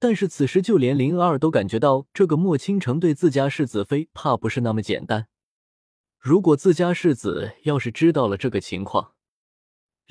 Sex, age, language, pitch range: male, 20-39, Chinese, 110-165 Hz